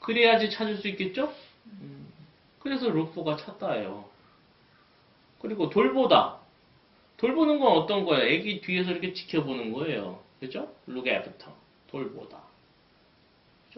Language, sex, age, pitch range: Korean, male, 30-49, 170-245 Hz